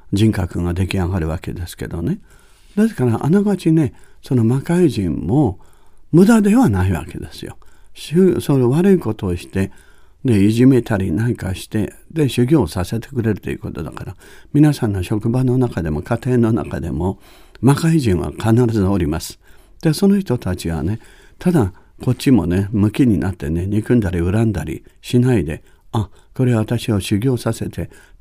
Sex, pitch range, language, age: male, 90-130 Hz, Japanese, 60-79